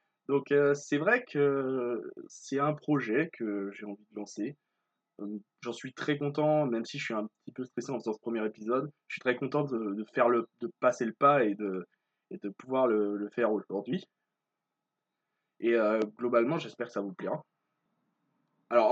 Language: French